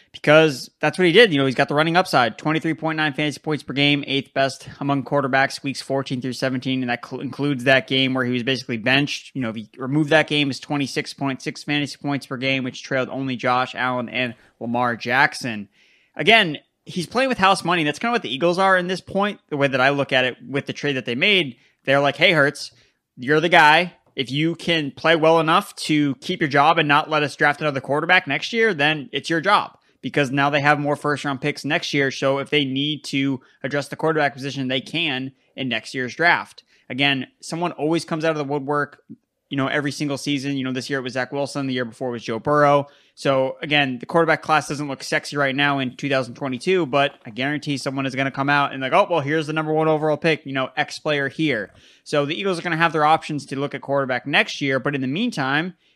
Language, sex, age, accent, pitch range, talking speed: English, male, 20-39, American, 135-155 Hz, 240 wpm